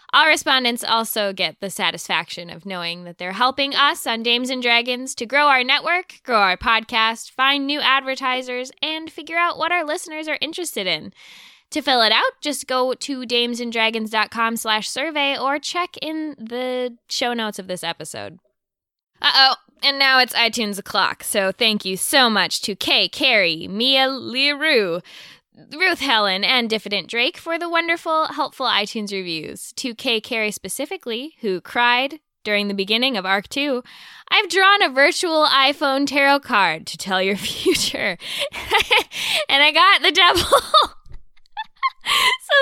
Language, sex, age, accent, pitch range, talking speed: English, female, 10-29, American, 225-335 Hz, 155 wpm